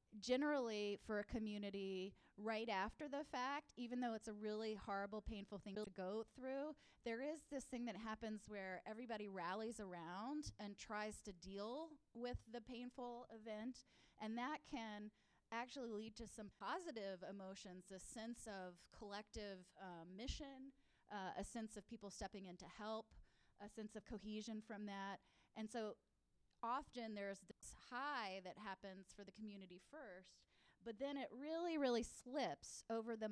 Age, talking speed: 20-39, 155 wpm